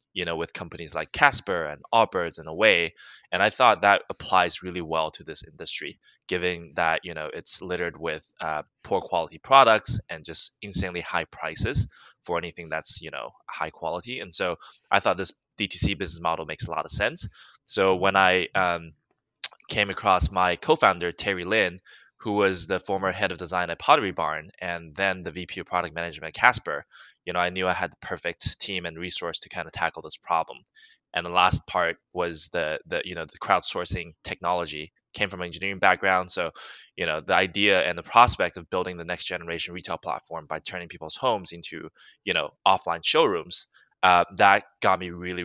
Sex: male